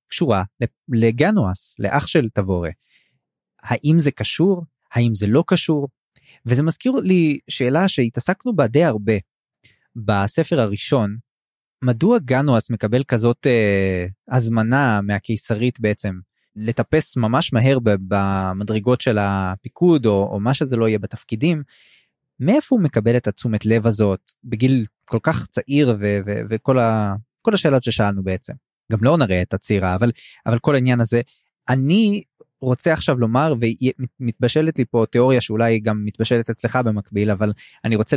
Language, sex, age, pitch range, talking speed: Hebrew, male, 20-39, 110-140 Hz, 135 wpm